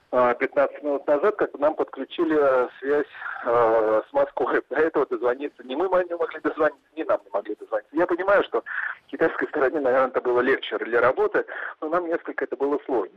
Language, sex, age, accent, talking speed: Russian, male, 40-59, native, 180 wpm